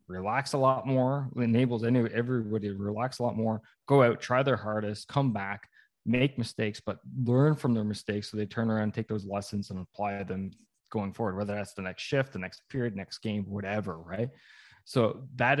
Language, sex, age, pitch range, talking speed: English, male, 20-39, 105-125 Hz, 205 wpm